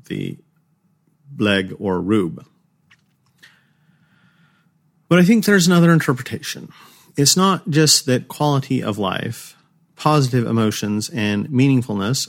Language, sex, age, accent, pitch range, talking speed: English, male, 40-59, American, 115-160 Hz, 100 wpm